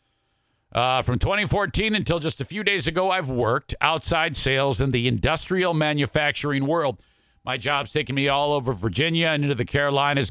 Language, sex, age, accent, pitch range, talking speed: English, male, 50-69, American, 120-160 Hz, 170 wpm